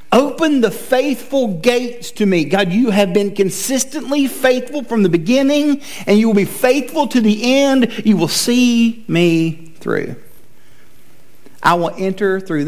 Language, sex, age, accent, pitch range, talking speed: English, male, 50-69, American, 160-235 Hz, 150 wpm